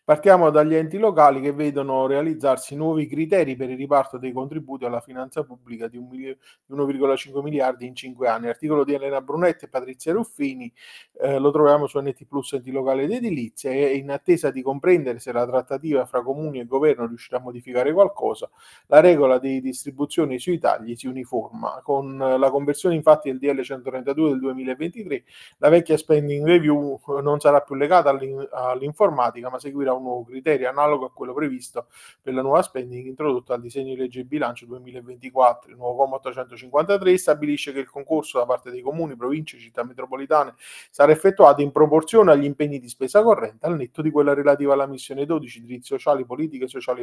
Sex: male